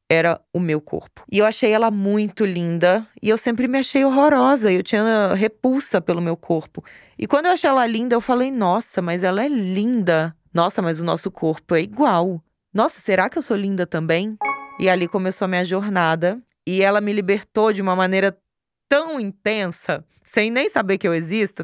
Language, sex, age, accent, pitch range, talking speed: Portuguese, female, 20-39, Brazilian, 180-220 Hz, 195 wpm